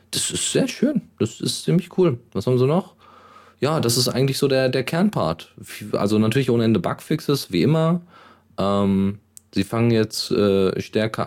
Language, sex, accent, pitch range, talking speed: German, male, German, 85-115 Hz, 175 wpm